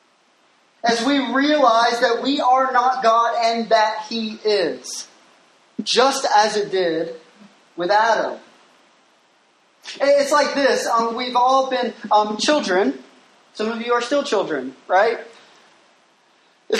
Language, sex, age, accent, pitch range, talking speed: English, male, 20-39, American, 195-235 Hz, 125 wpm